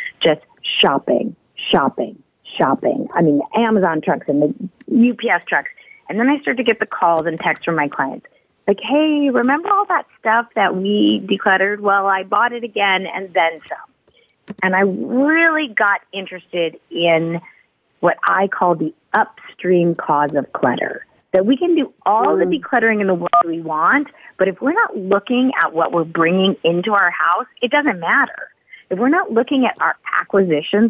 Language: English